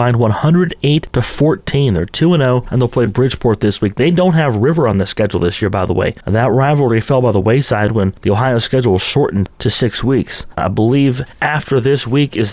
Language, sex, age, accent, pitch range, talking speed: English, male, 30-49, American, 105-135 Hz, 200 wpm